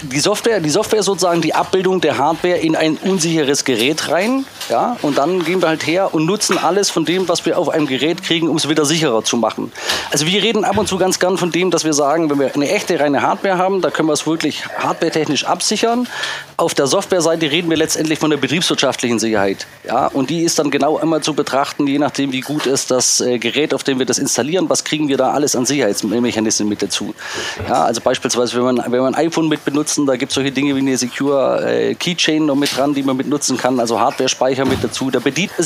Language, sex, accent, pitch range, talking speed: German, male, German, 130-175 Hz, 235 wpm